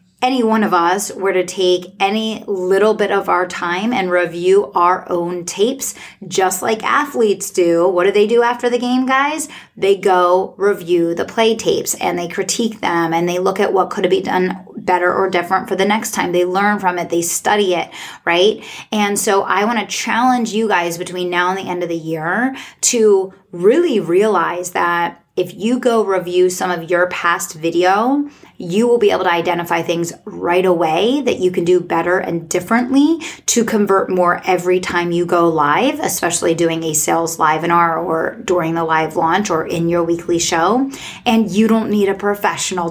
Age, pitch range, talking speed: 30-49, 175-215 Hz, 195 wpm